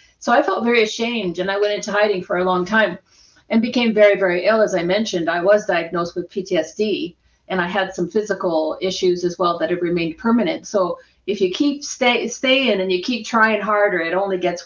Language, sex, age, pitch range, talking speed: English, female, 40-59, 185-225 Hz, 215 wpm